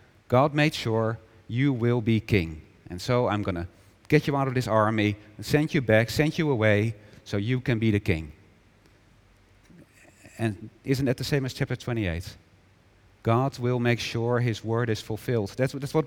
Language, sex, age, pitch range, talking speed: English, male, 40-59, 105-140 Hz, 185 wpm